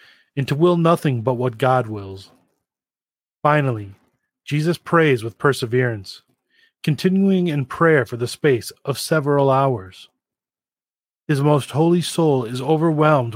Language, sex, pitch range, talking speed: English, male, 125-155 Hz, 125 wpm